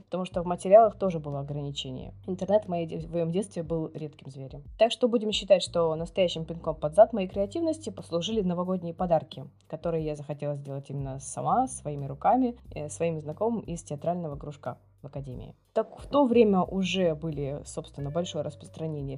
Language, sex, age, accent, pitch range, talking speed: Russian, female, 20-39, native, 150-205 Hz, 160 wpm